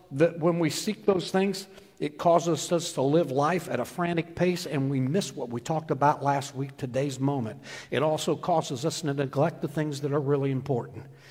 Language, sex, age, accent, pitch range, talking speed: English, male, 60-79, American, 125-185 Hz, 205 wpm